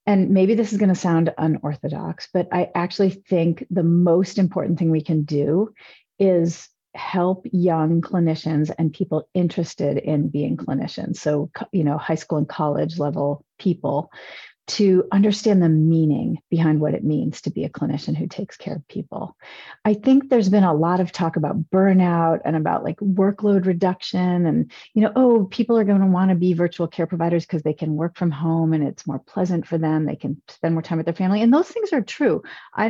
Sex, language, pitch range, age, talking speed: female, English, 160-195 Hz, 40-59, 200 wpm